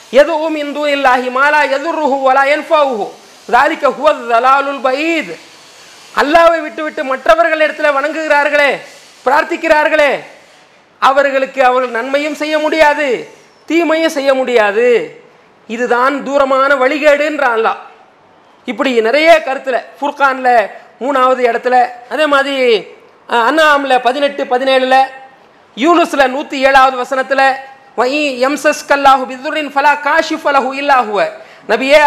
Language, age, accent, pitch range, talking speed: English, 40-59, Indian, 255-305 Hz, 100 wpm